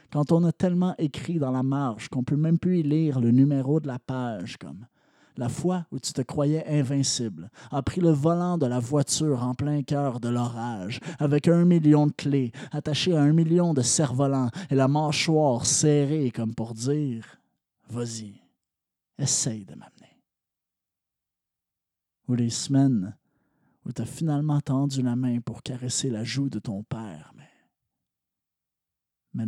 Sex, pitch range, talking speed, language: male, 125-155 Hz, 170 wpm, French